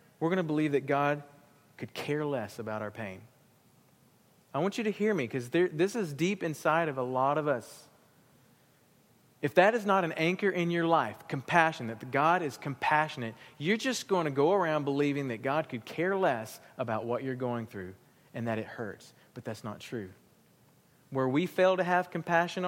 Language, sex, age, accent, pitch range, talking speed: English, male, 40-59, American, 125-170 Hz, 195 wpm